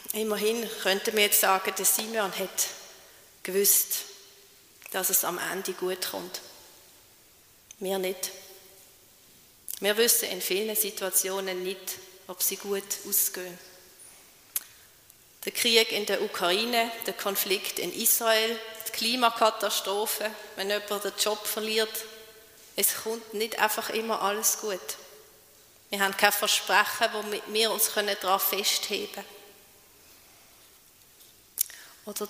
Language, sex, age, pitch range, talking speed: German, female, 30-49, 195-225 Hz, 115 wpm